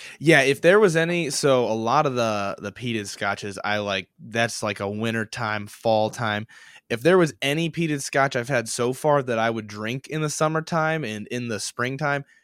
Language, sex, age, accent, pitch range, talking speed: English, male, 20-39, American, 110-140 Hz, 205 wpm